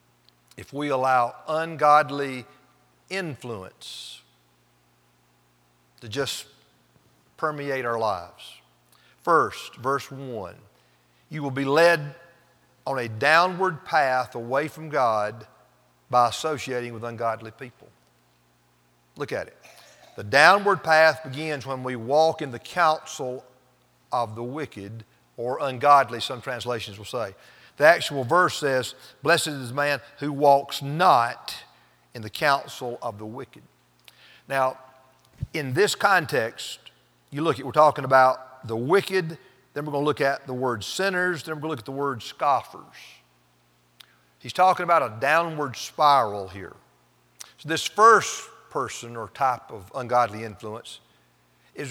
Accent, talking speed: American, 135 wpm